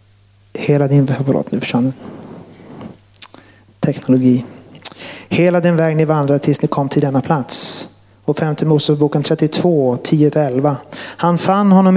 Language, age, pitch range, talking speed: Swedish, 30-49, 140-170 Hz, 115 wpm